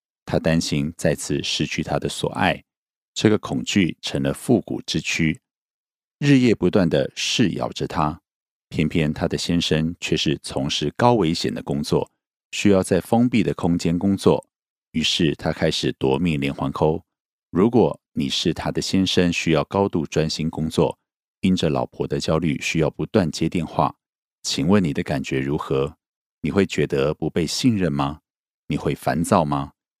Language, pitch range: Korean, 75-95 Hz